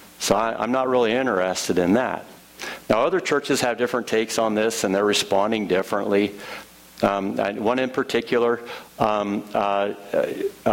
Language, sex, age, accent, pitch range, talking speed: English, male, 50-69, American, 100-120 Hz, 150 wpm